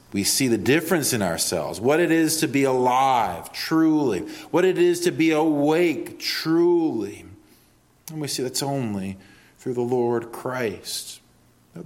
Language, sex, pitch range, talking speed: English, male, 110-170 Hz, 150 wpm